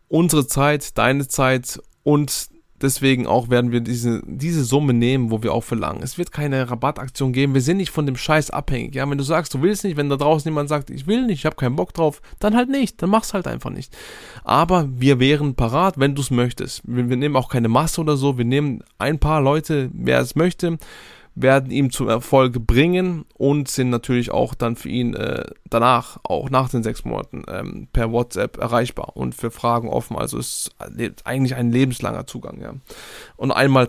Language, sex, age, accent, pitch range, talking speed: German, male, 20-39, German, 120-145 Hz, 210 wpm